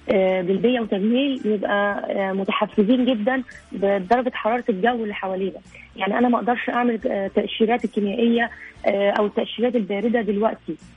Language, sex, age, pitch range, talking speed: Arabic, female, 20-39, 210-245 Hz, 115 wpm